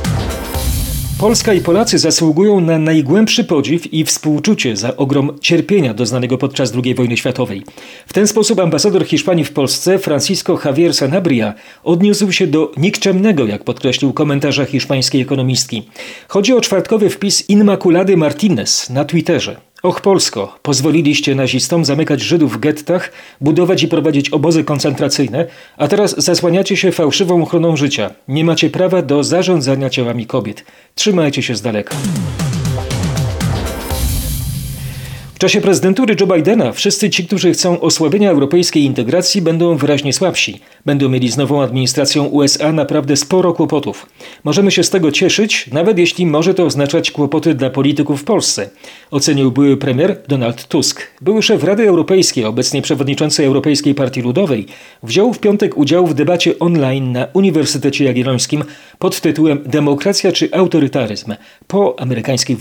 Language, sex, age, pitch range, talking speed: Polish, male, 40-59, 135-180 Hz, 140 wpm